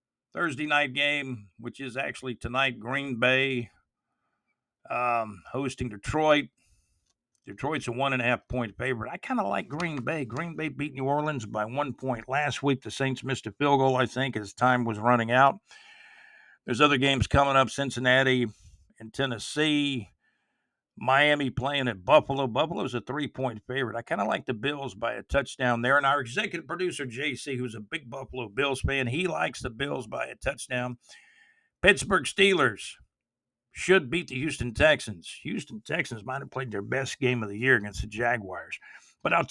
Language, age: English, 50-69